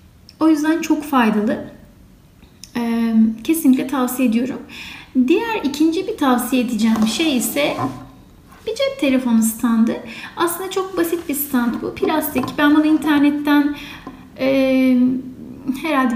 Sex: female